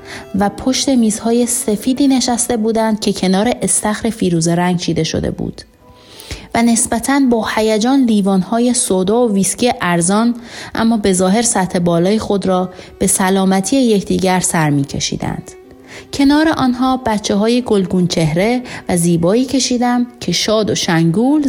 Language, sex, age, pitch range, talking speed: Persian, female, 30-49, 185-245 Hz, 135 wpm